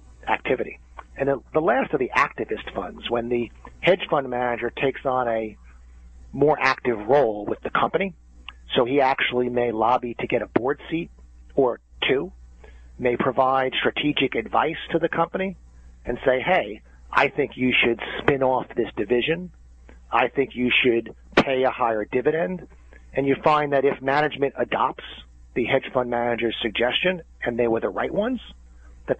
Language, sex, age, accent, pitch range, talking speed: English, male, 40-59, American, 105-135 Hz, 160 wpm